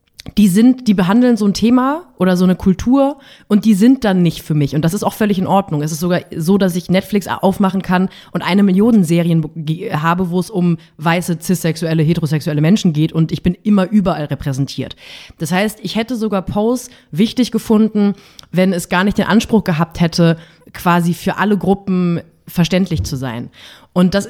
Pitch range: 170-210 Hz